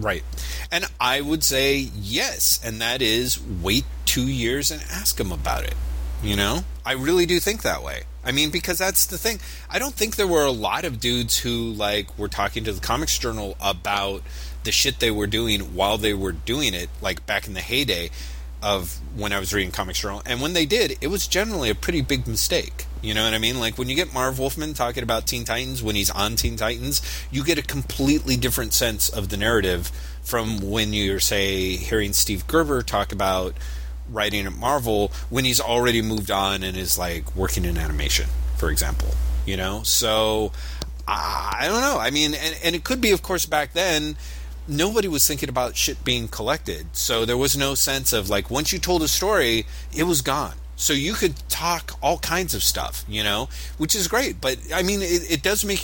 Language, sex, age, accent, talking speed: English, male, 30-49, American, 210 wpm